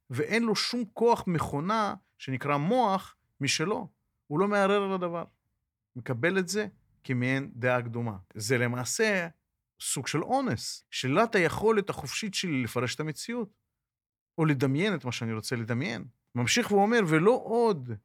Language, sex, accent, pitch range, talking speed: Hebrew, male, native, 125-190 Hz, 140 wpm